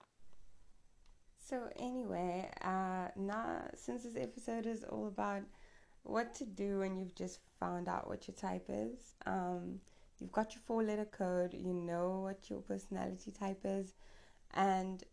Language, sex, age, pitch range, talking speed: English, female, 20-39, 170-195 Hz, 145 wpm